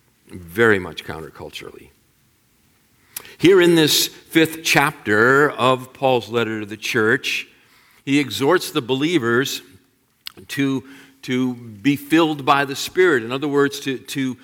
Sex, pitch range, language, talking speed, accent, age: male, 115-145 Hz, English, 125 wpm, American, 50-69